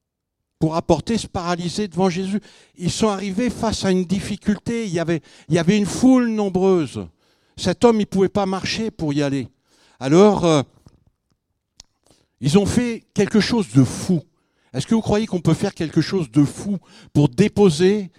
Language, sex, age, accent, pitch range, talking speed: French, male, 70-89, French, 150-190 Hz, 175 wpm